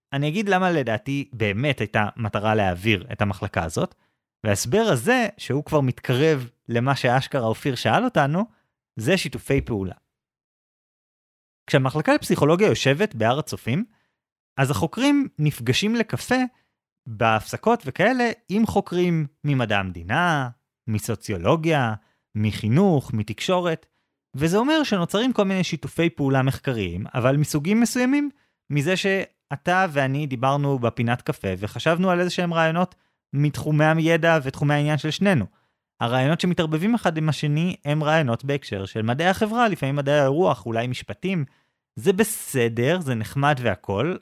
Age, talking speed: 30-49, 125 wpm